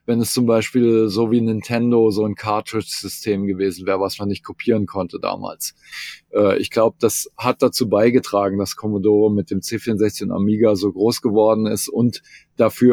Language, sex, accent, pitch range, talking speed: German, male, German, 105-120 Hz, 170 wpm